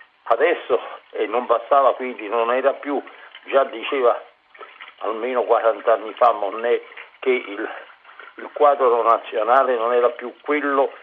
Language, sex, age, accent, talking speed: Italian, male, 50-69, native, 130 wpm